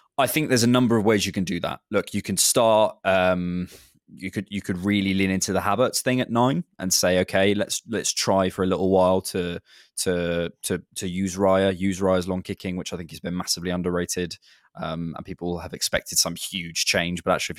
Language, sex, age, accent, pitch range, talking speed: English, male, 20-39, British, 90-100 Hz, 225 wpm